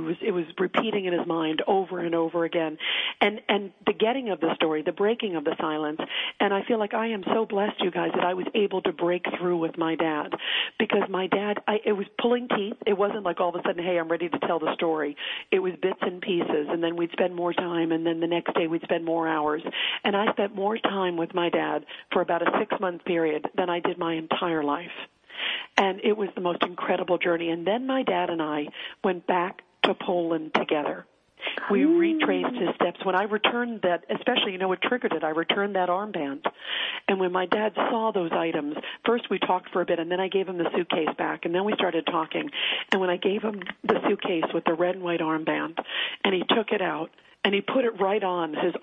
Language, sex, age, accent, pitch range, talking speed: English, female, 50-69, American, 170-205 Hz, 235 wpm